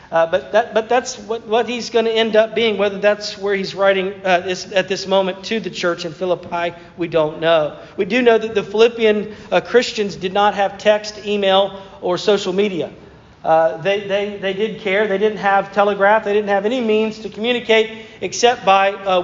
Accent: American